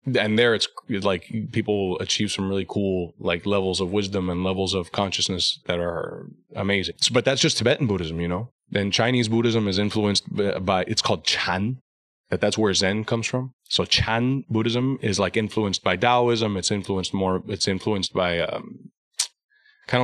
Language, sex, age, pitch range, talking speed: English, male, 20-39, 95-115 Hz, 185 wpm